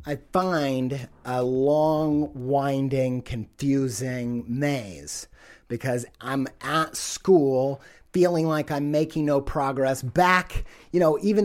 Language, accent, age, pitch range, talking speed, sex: English, American, 30-49, 125-150 Hz, 110 wpm, male